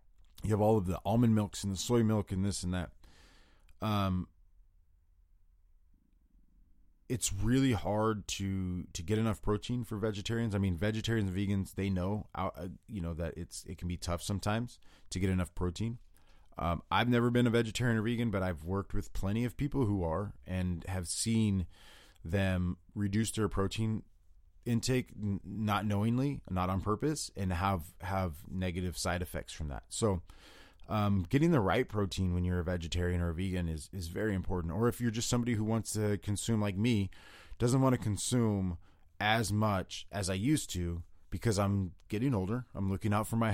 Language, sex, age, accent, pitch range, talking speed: English, male, 30-49, American, 90-110 Hz, 180 wpm